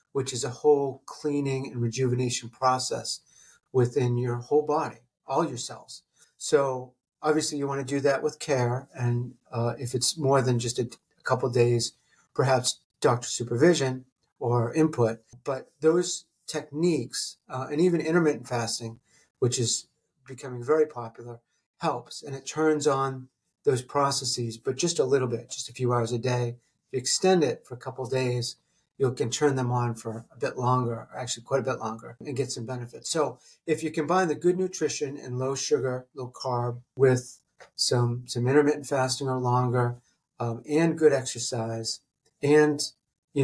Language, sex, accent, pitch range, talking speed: English, male, American, 120-145 Hz, 170 wpm